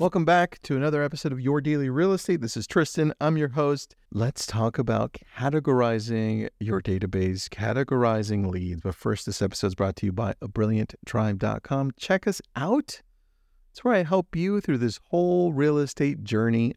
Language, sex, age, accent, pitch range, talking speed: English, male, 40-59, American, 105-145 Hz, 170 wpm